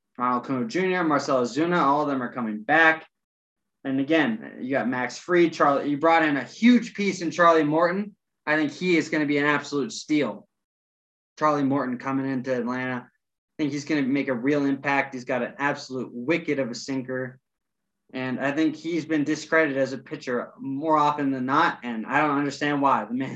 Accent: American